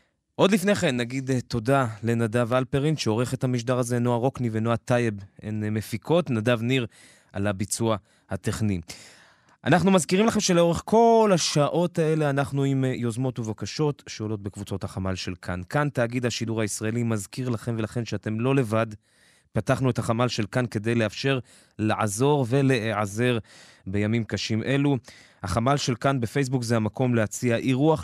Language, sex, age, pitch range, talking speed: Hebrew, male, 20-39, 105-130 Hz, 145 wpm